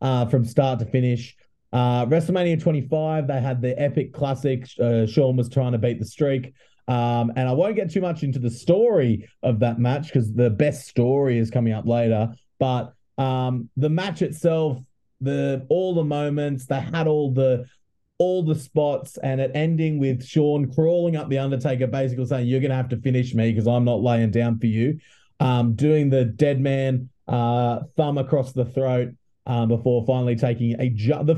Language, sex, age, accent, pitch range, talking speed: English, male, 30-49, Australian, 120-145 Hz, 190 wpm